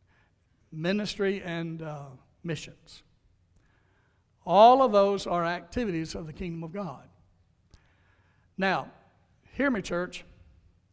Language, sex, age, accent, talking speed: English, male, 60-79, American, 100 wpm